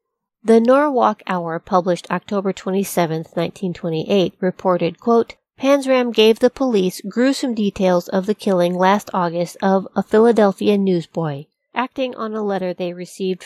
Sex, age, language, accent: female, 40-59, English, American